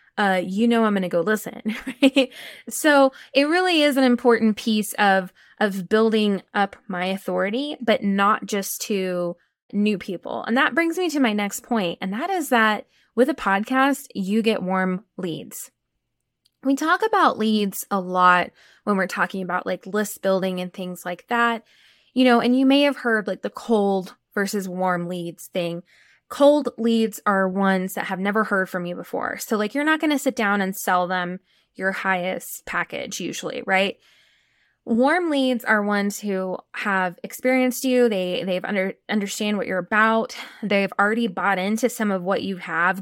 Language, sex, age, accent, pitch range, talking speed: English, female, 10-29, American, 185-240 Hz, 180 wpm